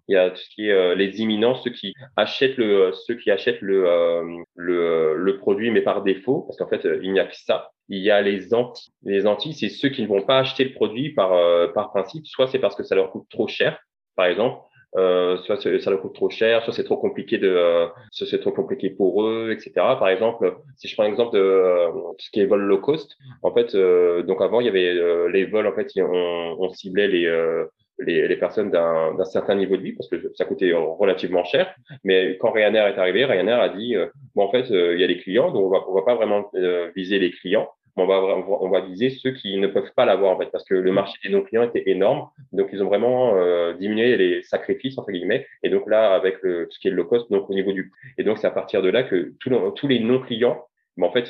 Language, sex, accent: English, male, French